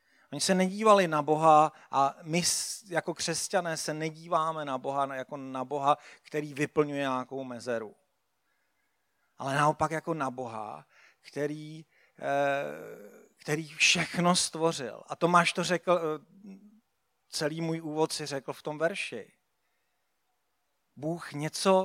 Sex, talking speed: male, 120 wpm